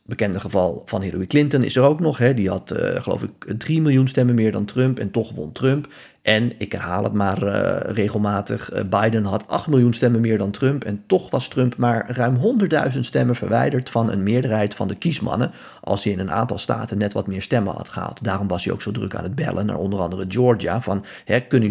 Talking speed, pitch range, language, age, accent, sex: 225 wpm, 100-130 Hz, Dutch, 50-69, Dutch, male